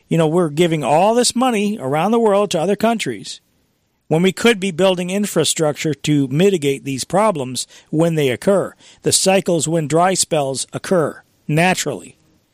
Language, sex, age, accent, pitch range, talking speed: English, male, 40-59, American, 140-190 Hz, 160 wpm